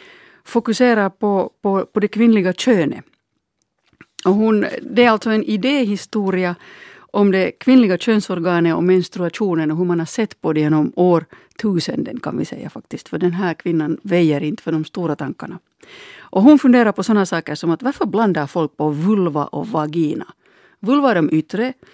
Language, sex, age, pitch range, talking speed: Finnish, female, 60-79, 165-225 Hz, 170 wpm